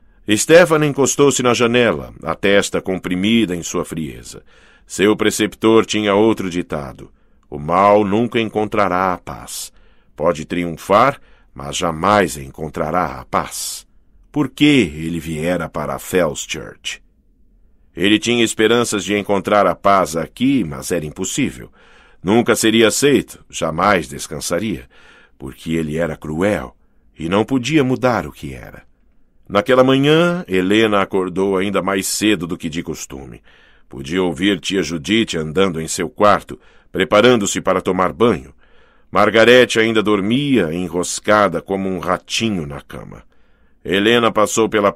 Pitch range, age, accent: 85-105 Hz, 50-69, Brazilian